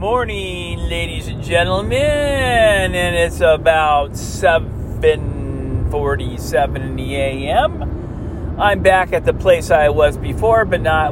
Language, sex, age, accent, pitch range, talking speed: English, male, 40-59, American, 110-180 Hz, 105 wpm